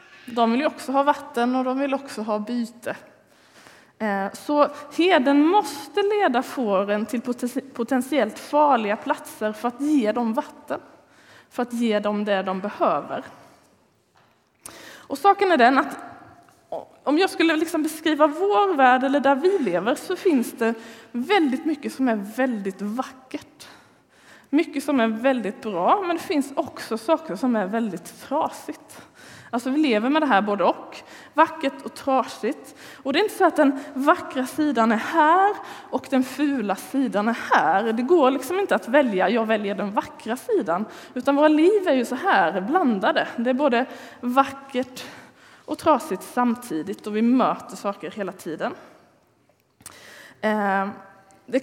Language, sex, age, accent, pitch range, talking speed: Swedish, female, 20-39, native, 230-300 Hz, 155 wpm